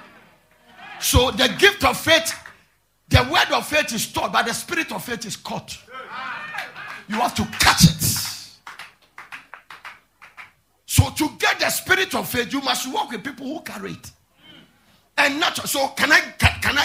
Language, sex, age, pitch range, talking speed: English, male, 50-69, 185-275 Hz, 160 wpm